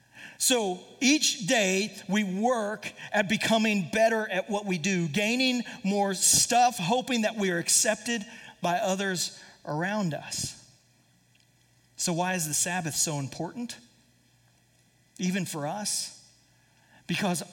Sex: male